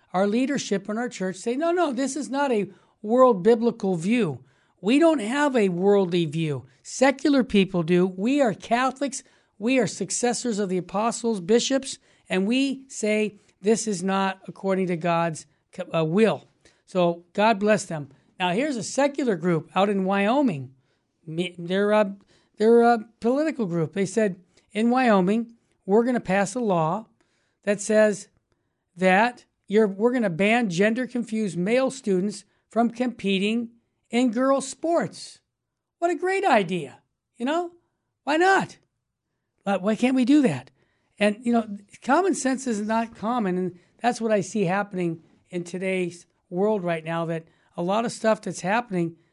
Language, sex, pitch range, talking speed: English, male, 180-240 Hz, 155 wpm